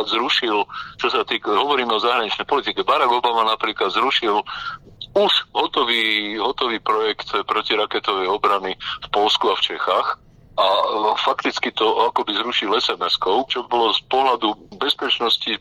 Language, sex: Slovak, male